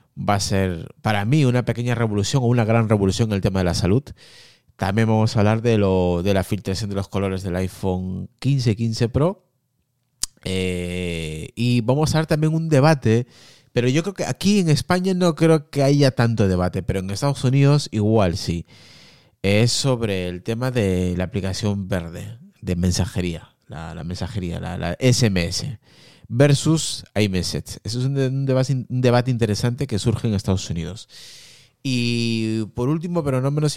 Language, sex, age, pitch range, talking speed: Spanish, male, 30-49, 95-130 Hz, 175 wpm